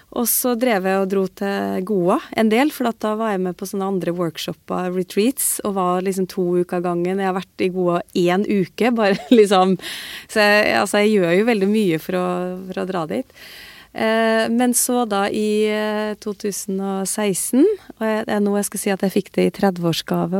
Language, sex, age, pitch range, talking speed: English, female, 30-49, 180-220 Hz, 195 wpm